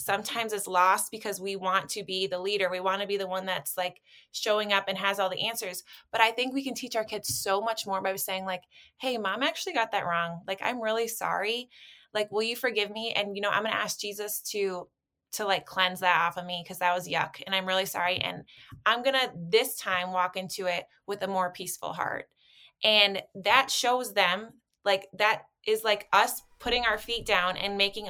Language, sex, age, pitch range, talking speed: English, female, 20-39, 190-225 Hz, 230 wpm